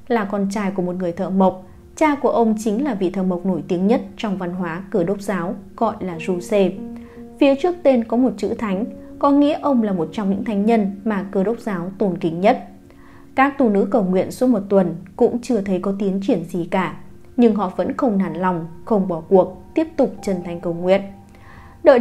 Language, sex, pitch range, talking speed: Vietnamese, female, 185-235 Hz, 225 wpm